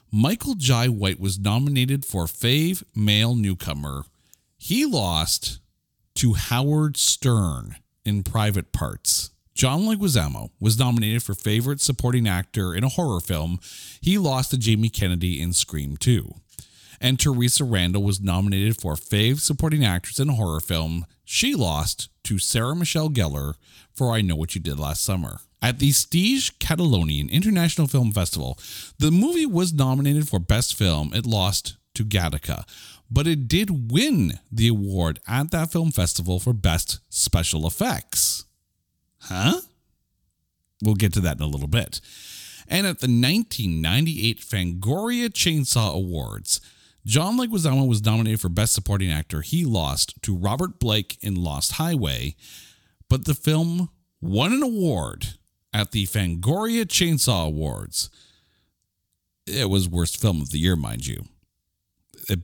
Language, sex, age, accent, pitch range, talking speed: English, male, 40-59, American, 85-130 Hz, 145 wpm